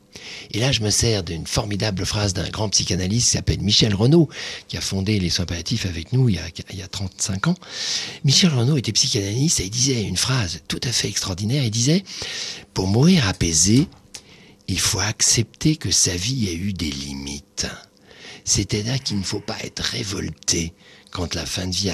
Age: 50-69